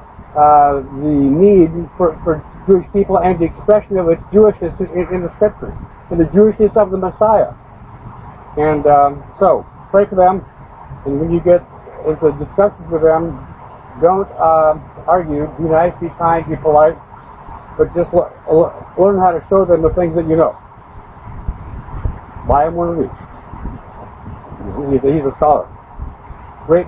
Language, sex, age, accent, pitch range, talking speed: English, male, 60-79, American, 155-205 Hz, 155 wpm